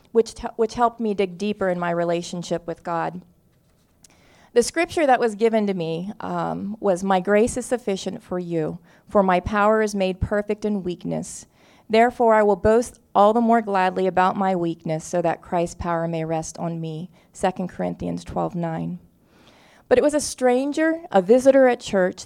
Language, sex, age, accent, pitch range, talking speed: English, female, 30-49, American, 175-215 Hz, 180 wpm